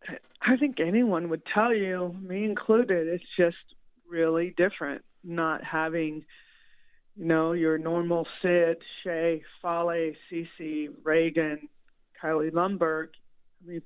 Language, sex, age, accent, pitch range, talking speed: English, female, 50-69, American, 160-195 Hz, 115 wpm